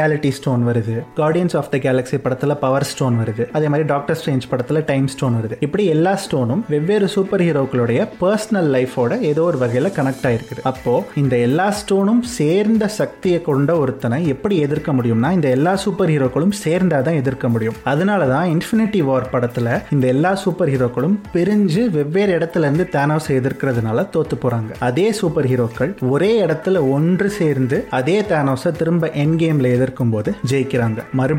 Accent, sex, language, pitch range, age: native, male, Tamil, 130-170 Hz, 30-49